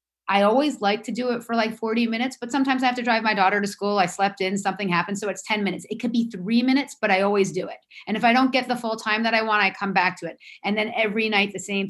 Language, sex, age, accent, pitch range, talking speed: English, female, 30-49, American, 185-225 Hz, 310 wpm